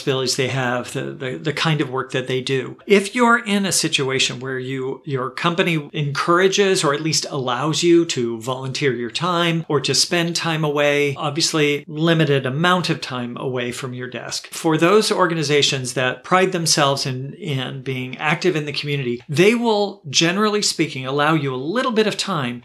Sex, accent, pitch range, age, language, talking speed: male, American, 135-175 Hz, 50-69, English, 175 wpm